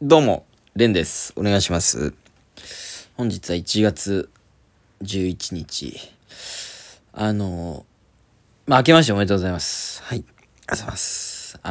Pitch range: 95-140 Hz